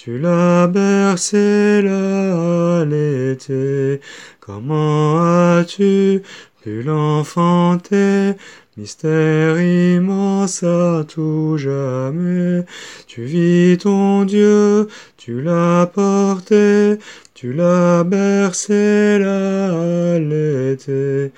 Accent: French